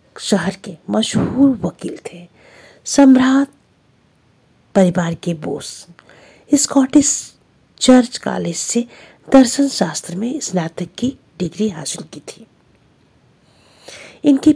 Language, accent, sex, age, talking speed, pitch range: Hindi, native, female, 50-69, 95 wpm, 175-260 Hz